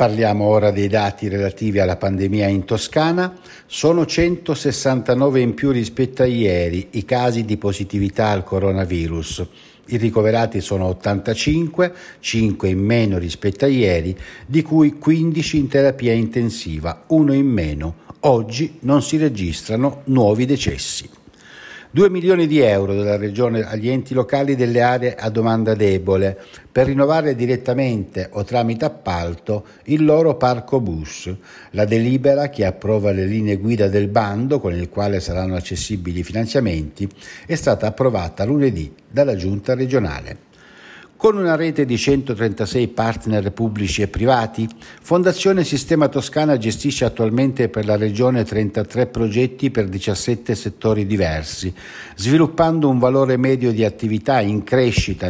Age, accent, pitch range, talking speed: 60-79, native, 100-135 Hz, 135 wpm